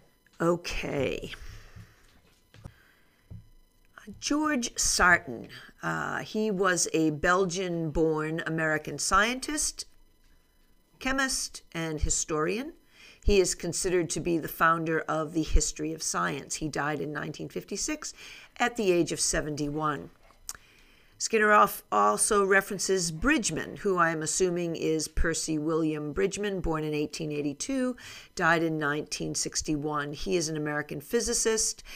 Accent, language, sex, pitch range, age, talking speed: American, English, female, 155-195 Hz, 50-69, 105 wpm